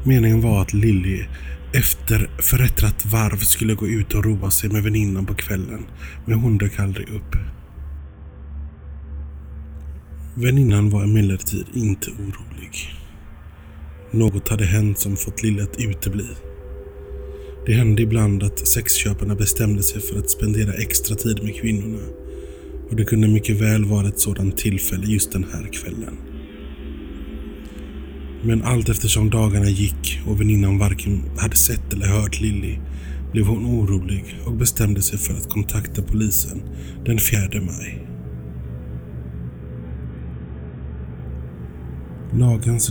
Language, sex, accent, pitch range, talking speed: Swedish, male, native, 70-110 Hz, 125 wpm